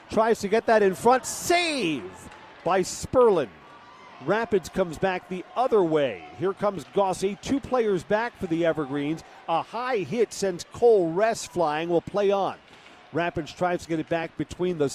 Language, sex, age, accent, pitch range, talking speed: English, male, 40-59, American, 155-200 Hz, 170 wpm